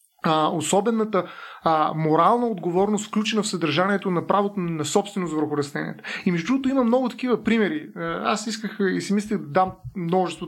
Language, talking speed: Bulgarian, 155 wpm